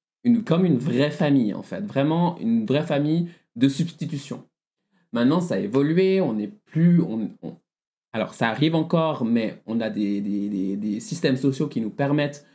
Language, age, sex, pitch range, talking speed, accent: French, 20-39, male, 120-160 Hz, 180 wpm, French